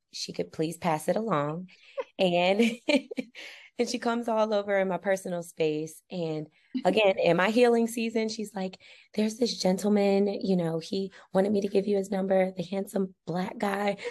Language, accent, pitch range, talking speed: English, American, 165-215 Hz, 175 wpm